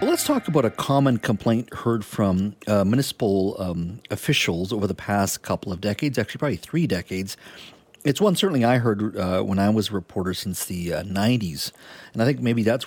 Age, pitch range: 40-59, 95-130 Hz